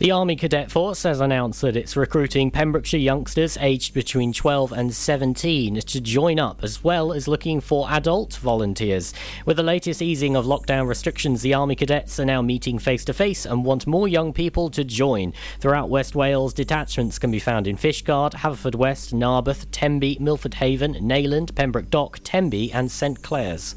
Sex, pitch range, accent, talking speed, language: male, 120-155 Hz, British, 175 wpm, English